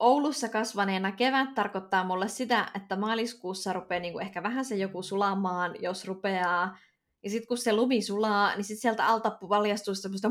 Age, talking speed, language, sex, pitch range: 20-39, 170 wpm, Finnish, female, 190-235 Hz